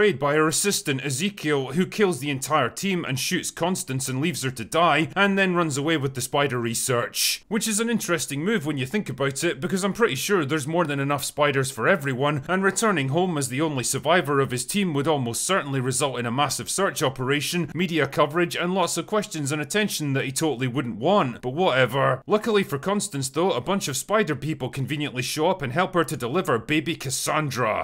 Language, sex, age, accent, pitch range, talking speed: English, male, 30-49, British, 135-185 Hz, 215 wpm